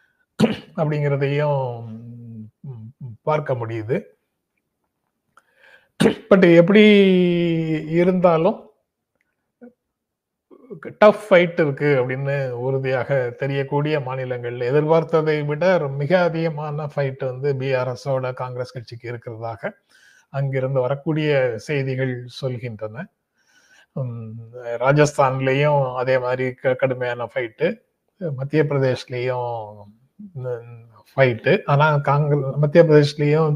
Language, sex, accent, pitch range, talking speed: Tamil, male, native, 125-160 Hz, 70 wpm